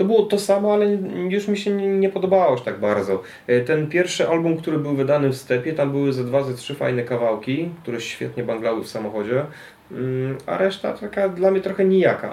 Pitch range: 110-140 Hz